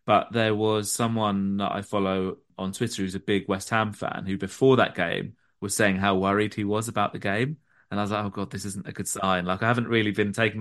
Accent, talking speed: British, 255 wpm